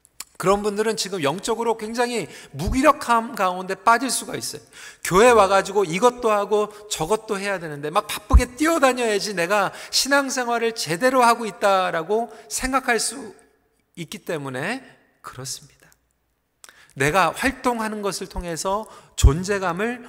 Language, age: Korean, 40-59